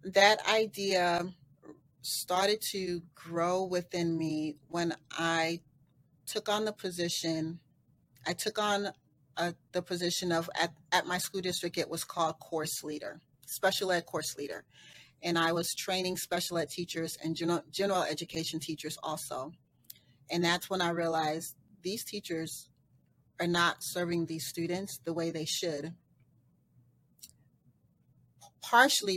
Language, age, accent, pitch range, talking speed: English, 30-49, American, 150-180 Hz, 130 wpm